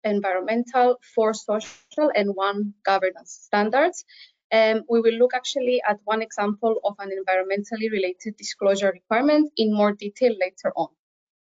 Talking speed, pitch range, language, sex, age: 140 wpm, 200-250 Hz, German, female, 20-39